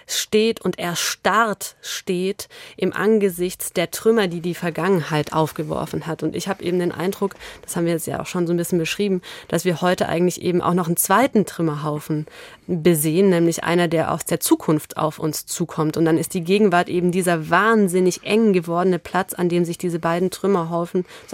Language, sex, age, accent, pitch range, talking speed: German, female, 20-39, German, 175-210 Hz, 190 wpm